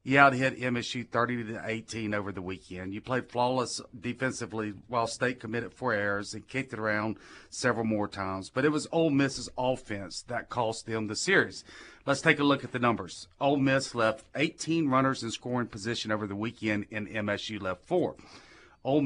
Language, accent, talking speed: English, American, 185 wpm